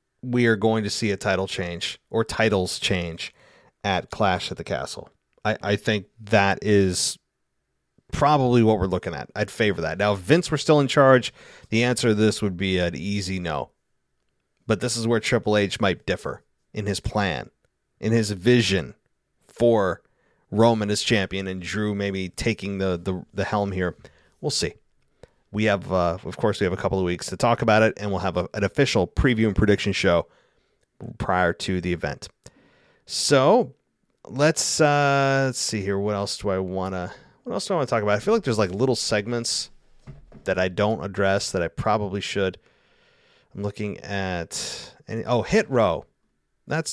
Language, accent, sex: English, American, male